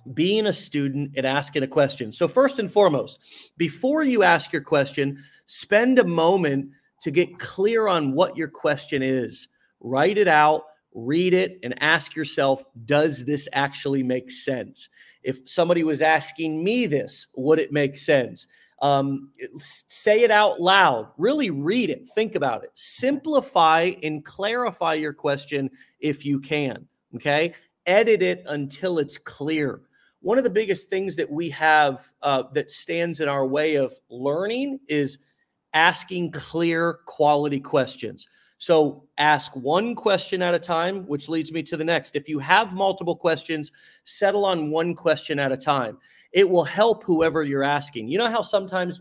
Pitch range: 145-195 Hz